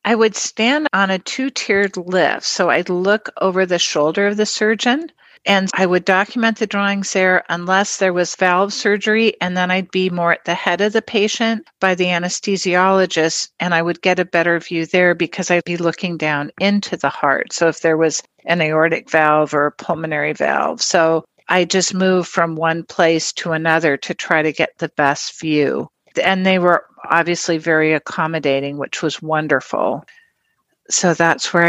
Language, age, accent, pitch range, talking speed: English, 50-69, American, 165-195 Hz, 185 wpm